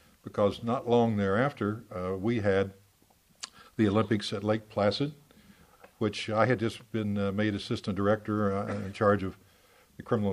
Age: 60-79